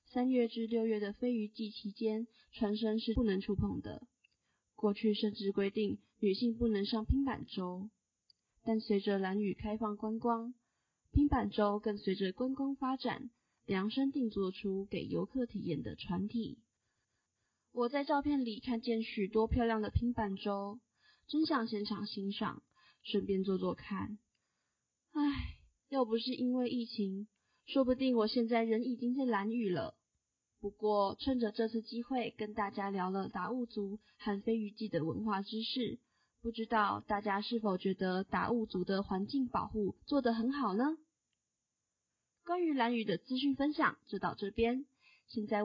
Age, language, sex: 20-39, Chinese, female